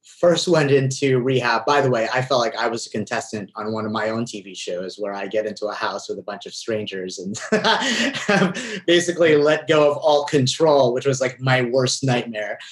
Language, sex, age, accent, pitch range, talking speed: English, male, 30-49, American, 115-145 Hz, 210 wpm